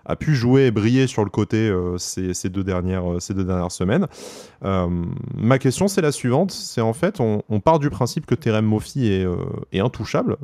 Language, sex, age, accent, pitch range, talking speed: French, male, 20-39, French, 95-125 Hz, 220 wpm